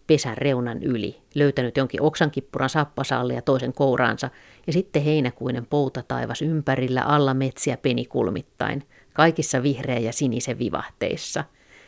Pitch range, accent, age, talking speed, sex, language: 130-150 Hz, native, 50-69, 120 wpm, female, Finnish